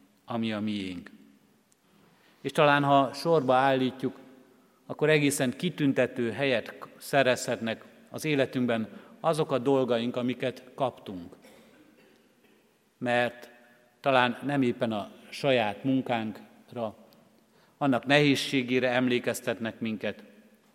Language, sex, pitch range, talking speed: Hungarian, male, 115-135 Hz, 90 wpm